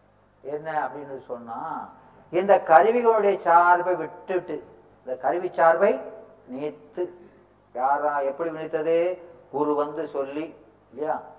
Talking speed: 95 wpm